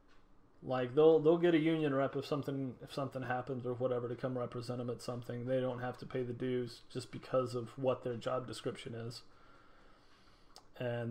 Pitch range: 120-155 Hz